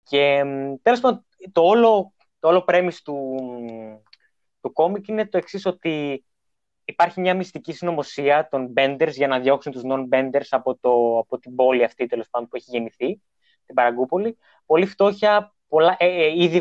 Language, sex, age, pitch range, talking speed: Greek, male, 20-39, 130-175 Hz, 160 wpm